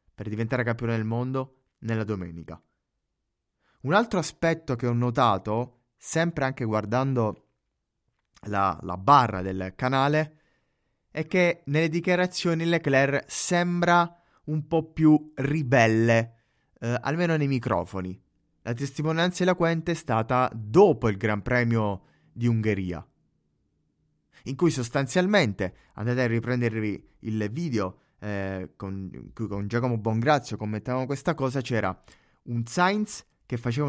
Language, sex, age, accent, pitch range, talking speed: Italian, male, 20-39, native, 110-145 Hz, 120 wpm